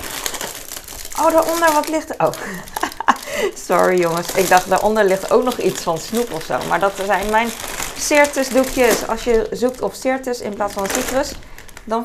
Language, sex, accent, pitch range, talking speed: Dutch, female, Dutch, 185-240 Hz, 170 wpm